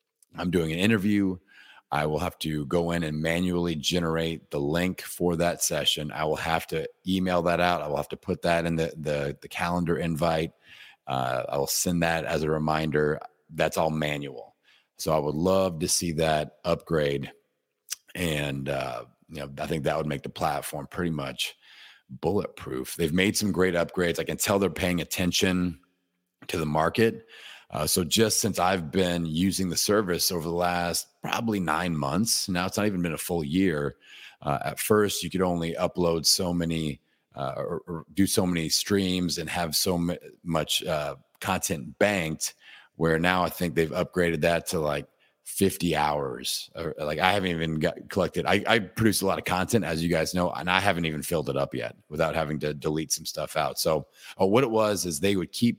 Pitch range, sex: 80-95 Hz, male